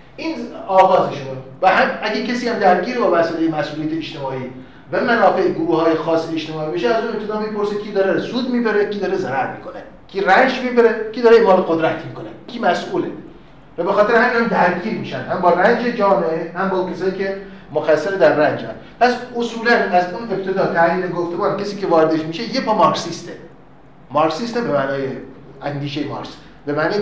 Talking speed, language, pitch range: 180 wpm, Persian, 150-195 Hz